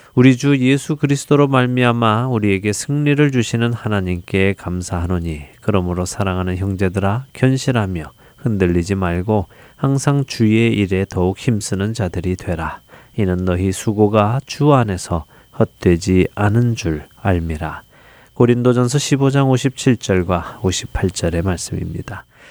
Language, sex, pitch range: Korean, male, 95-130 Hz